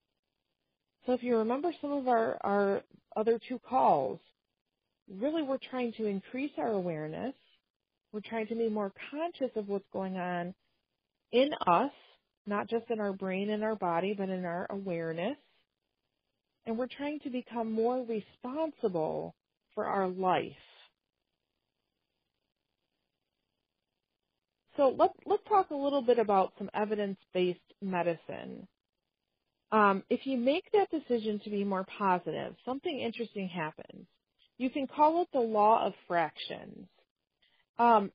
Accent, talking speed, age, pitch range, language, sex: American, 135 wpm, 40-59, 190-255 Hz, English, female